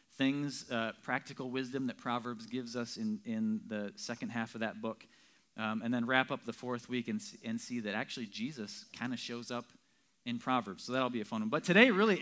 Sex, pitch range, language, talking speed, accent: male, 125-190 Hz, English, 220 wpm, American